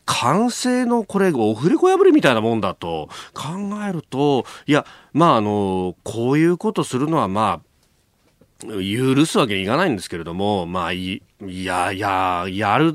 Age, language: 30-49, Japanese